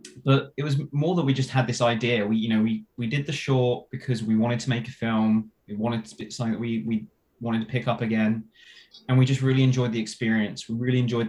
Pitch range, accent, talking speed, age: 115-130 Hz, British, 255 wpm, 20-39